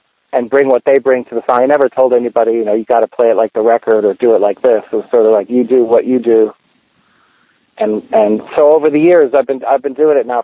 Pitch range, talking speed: 115-140 Hz, 285 wpm